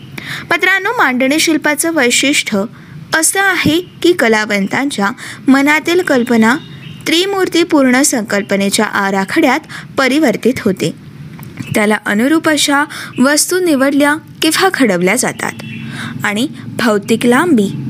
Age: 20-39